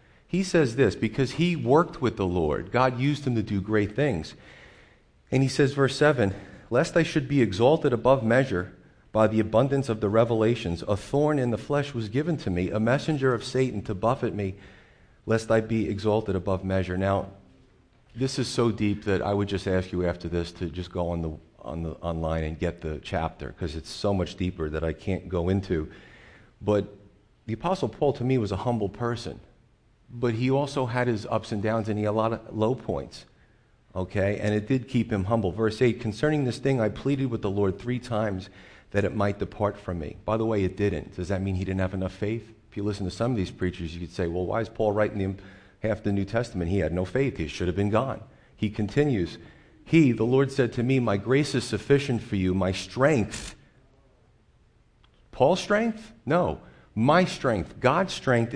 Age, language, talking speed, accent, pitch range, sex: 40-59, English, 210 wpm, American, 95-125 Hz, male